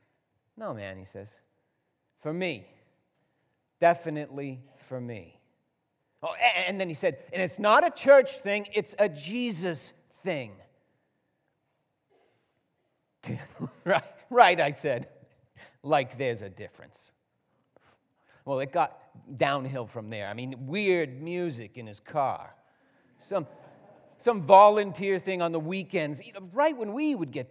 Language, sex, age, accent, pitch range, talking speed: English, male, 40-59, American, 125-190 Hz, 125 wpm